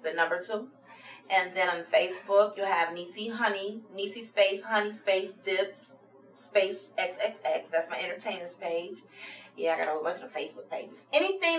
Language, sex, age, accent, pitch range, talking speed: English, female, 30-49, American, 175-225 Hz, 160 wpm